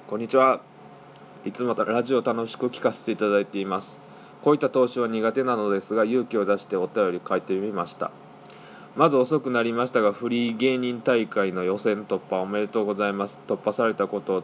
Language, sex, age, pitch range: Japanese, male, 20-39, 100-125 Hz